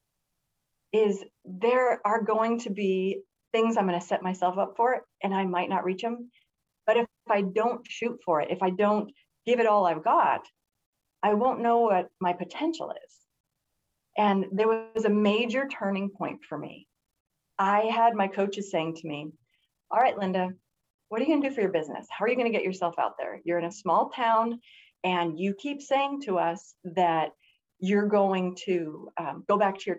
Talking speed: 200 wpm